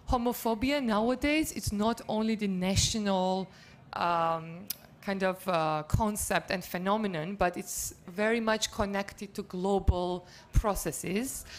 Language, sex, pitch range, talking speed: Danish, female, 185-215 Hz, 115 wpm